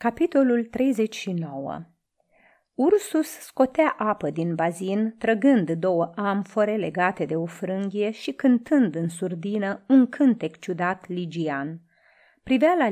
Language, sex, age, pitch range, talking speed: Romanian, female, 30-49, 175-245 Hz, 110 wpm